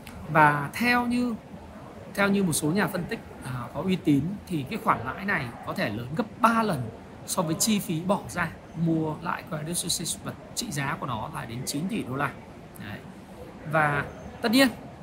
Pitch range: 175-220 Hz